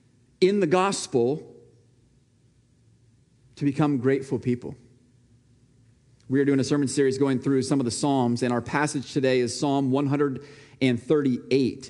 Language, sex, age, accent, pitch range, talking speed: English, male, 40-59, American, 120-150 Hz, 130 wpm